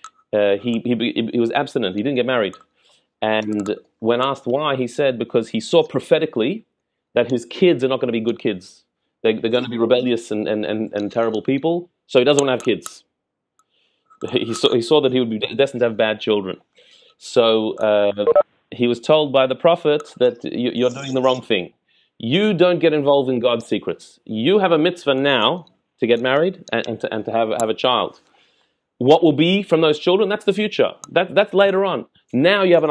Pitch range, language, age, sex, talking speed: 120-165 Hz, English, 30-49, male, 215 wpm